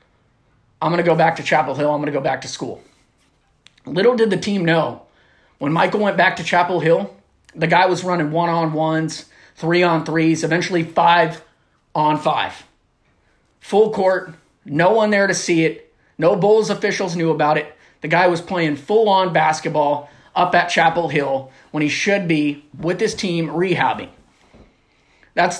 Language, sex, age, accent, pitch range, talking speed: English, male, 30-49, American, 150-180 Hz, 160 wpm